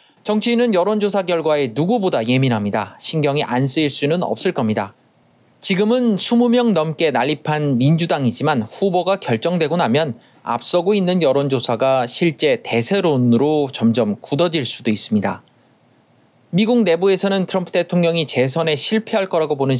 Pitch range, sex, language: 130-200 Hz, male, Korean